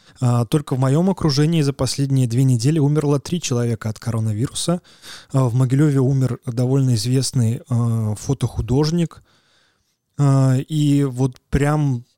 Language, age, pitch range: Russian, 20-39, 125-145 Hz